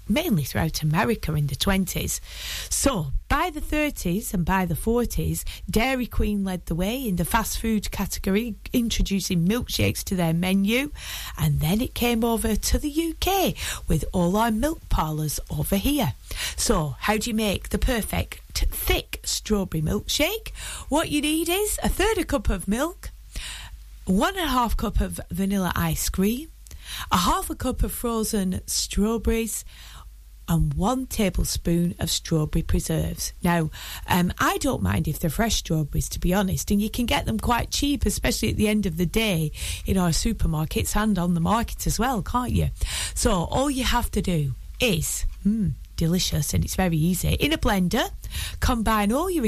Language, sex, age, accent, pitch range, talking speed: English, female, 30-49, British, 165-235 Hz, 170 wpm